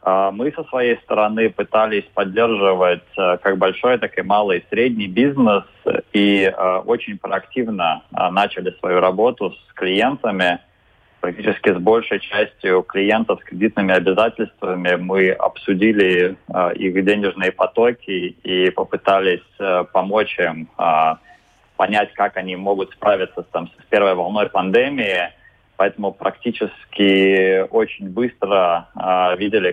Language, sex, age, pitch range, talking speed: Russian, male, 20-39, 95-110 Hz, 105 wpm